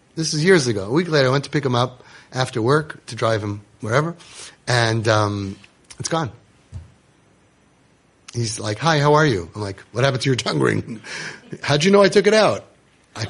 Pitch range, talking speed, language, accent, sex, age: 115-165 Hz, 205 wpm, English, American, male, 30-49